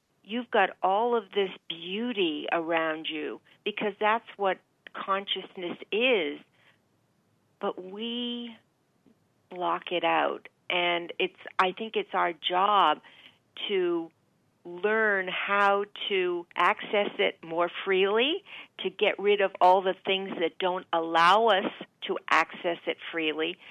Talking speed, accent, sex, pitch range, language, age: 120 wpm, American, female, 185-235 Hz, English, 50-69